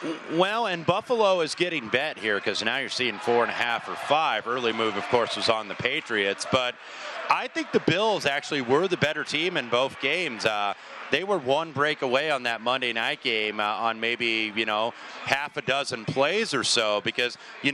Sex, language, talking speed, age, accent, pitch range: male, English, 210 wpm, 30-49, American, 115-145 Hz